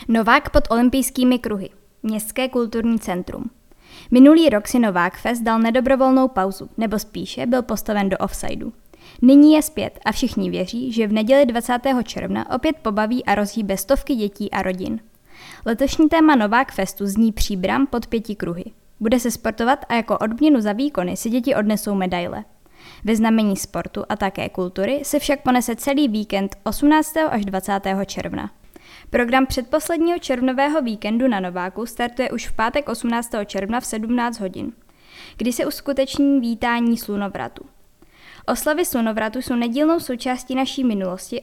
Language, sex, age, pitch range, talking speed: Czech, female, 10-29, 205-260 Hz, 150 wpm